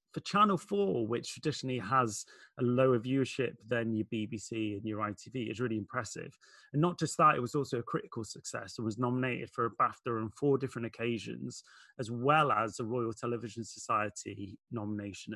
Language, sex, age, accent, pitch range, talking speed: English, male, 30-49, British, 115-140 Hz, 180 wpm